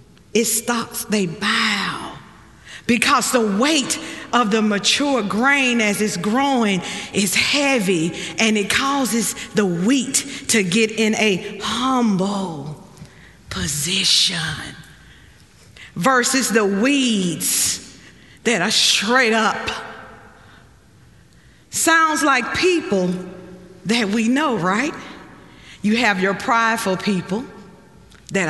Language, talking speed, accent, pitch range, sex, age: English, 100 wpm, American, 190-260 Hz, female, 40-59